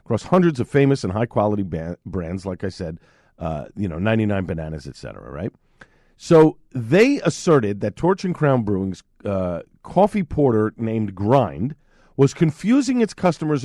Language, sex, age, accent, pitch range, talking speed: English, male, 50-69, American, 115-170 Hz, 150 wpm